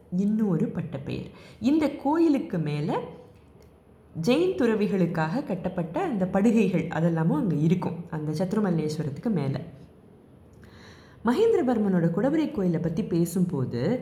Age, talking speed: 20-39, 90 wpm